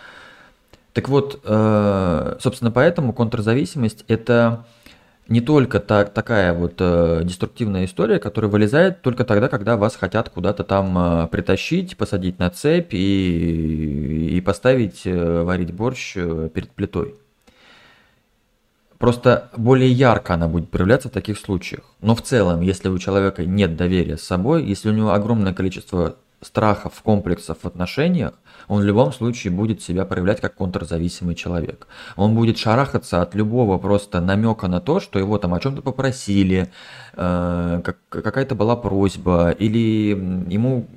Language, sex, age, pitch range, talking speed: Russian, male, 20-39, 90-115 Hz, 130 wpm